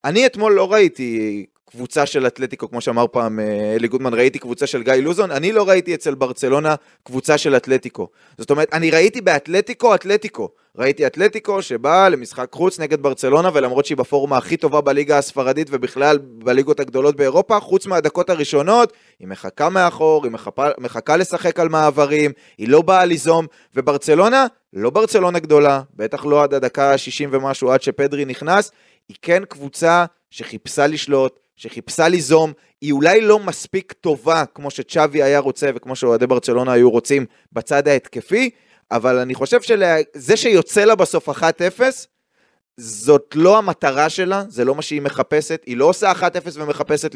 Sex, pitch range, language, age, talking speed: male, 130-175 Hz, Hebrew, 20-39, 145 wpm